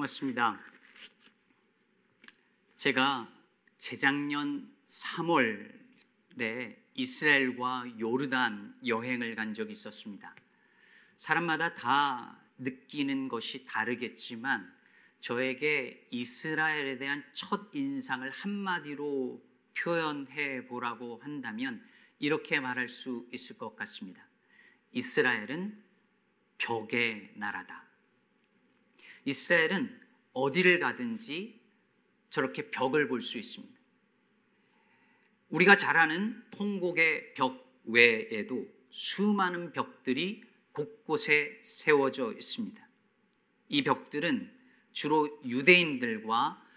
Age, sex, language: 40-59, male, Korean